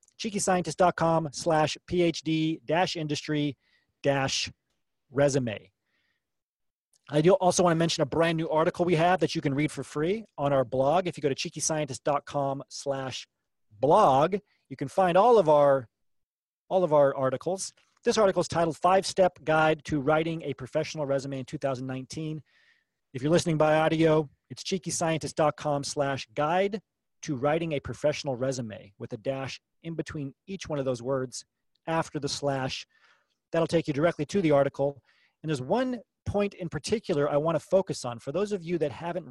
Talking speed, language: 165 wpm, English